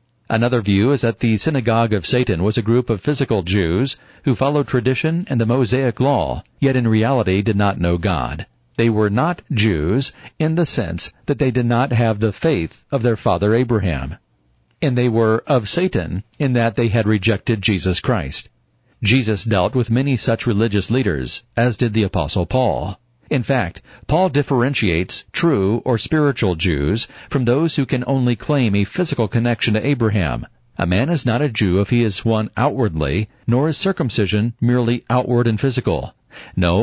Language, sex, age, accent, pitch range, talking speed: English, male, 50-69, American, 100-130 Hz, 175 wpm